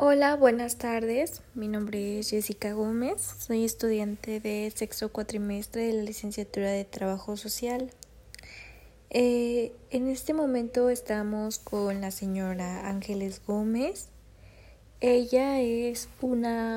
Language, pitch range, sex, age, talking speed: Spanish, 210-250 Hz, female, 20-39, 115 wpm